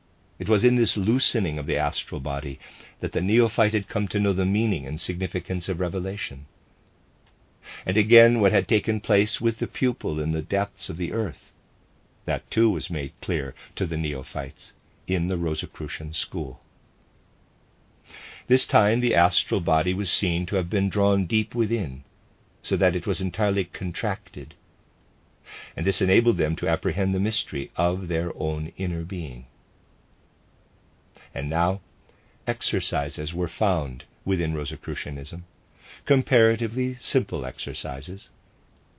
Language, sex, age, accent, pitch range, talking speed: English, male, 50-69, American, 80-105 Hz, 140 wpm